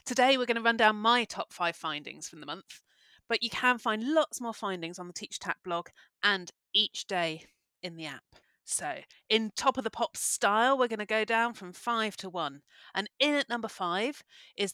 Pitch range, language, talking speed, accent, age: 175-230 Hz, English, 210 wpm, British, 30-49